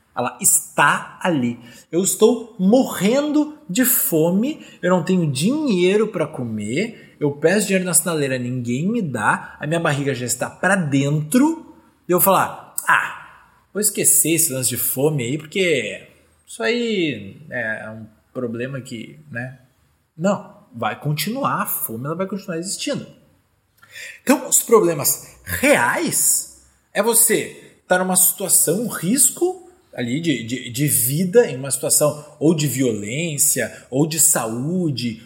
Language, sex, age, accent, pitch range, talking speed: Portuguese, male, 20-39, Brazilian, 140-210 Hz, 140 wpm